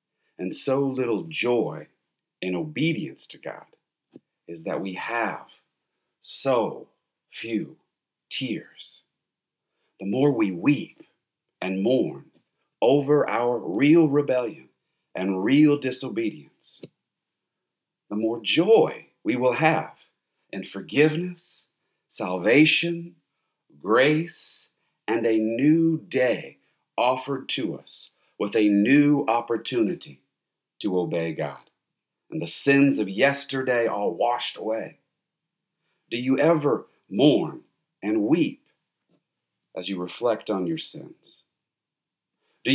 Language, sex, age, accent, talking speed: English, male, 50-69, American, 100 wpm